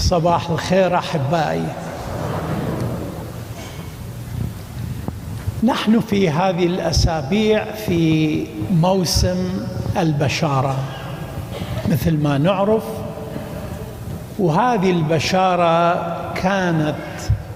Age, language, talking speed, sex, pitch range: 60-79, English, 55 wpm, male, 130-175 Hz